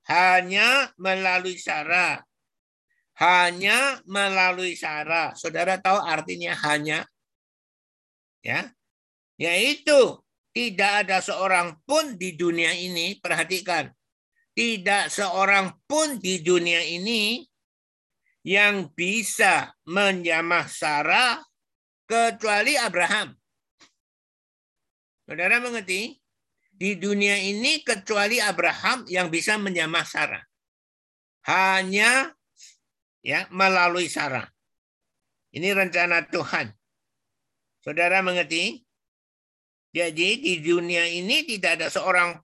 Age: 50-69